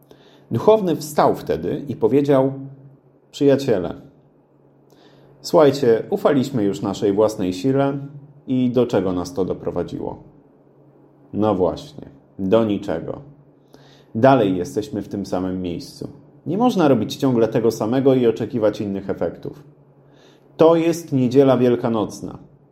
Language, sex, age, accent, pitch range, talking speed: Polish, male, 30-49, native, 110-145 Hz, 110 wpm